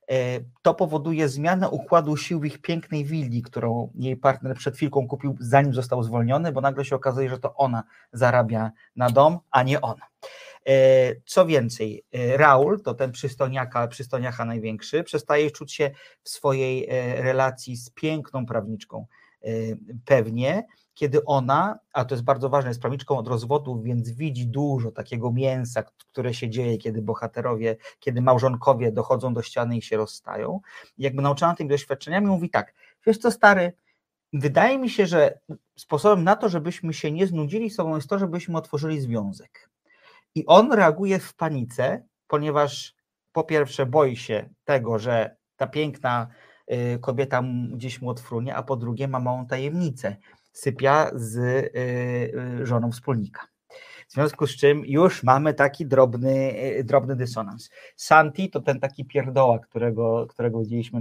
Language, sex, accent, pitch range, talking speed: Polish, male, native, 120-150 Hz, 145 wpm